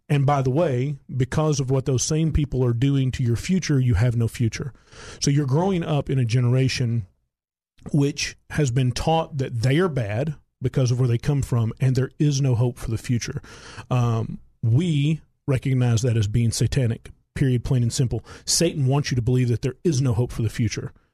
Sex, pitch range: male, 120-140 Hz